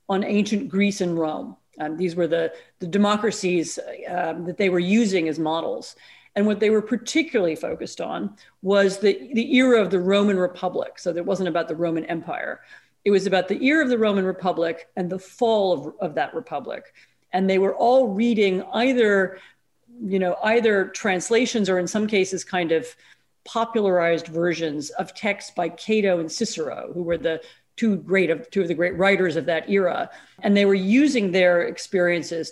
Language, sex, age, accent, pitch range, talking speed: English, female, 40-59, American, 170-205 Hz, 180 wpm